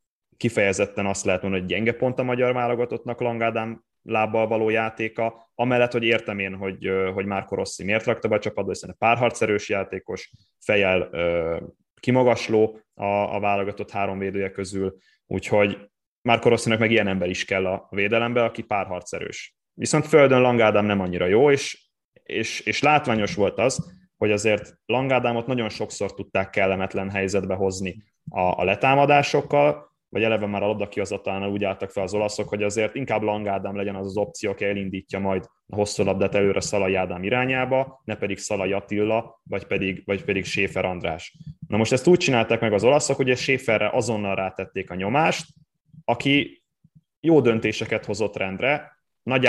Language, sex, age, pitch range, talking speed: Hungarian, male, 20-39, 95-120 Hz, 160 wpm